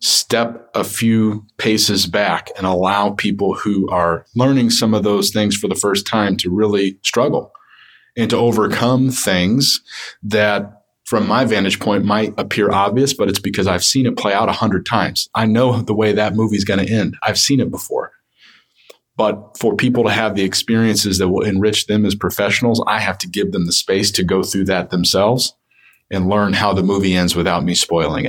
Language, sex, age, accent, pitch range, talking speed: English, male, 40-59, American, 100-115 Hz, 195 wpm